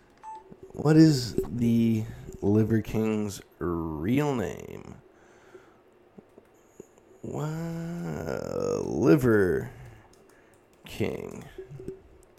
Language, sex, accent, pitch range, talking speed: English, male, American, 105-140 Hz, 50 wpm